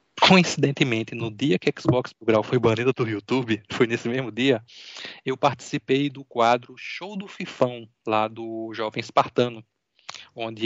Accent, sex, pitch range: Brazilian, male, 115-145 Hz